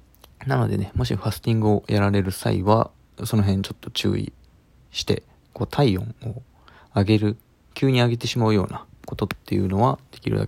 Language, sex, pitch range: Japanese, male, 95-115 Hz